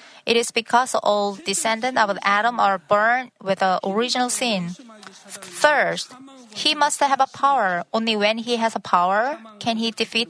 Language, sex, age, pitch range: Korean, female, 30-49, 195-255 Hz